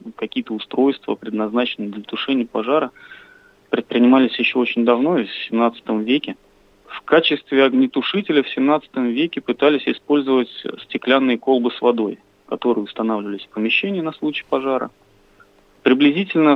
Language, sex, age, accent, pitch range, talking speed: Russian, male, 30-49, native, 110-145 Hz, 120 wpm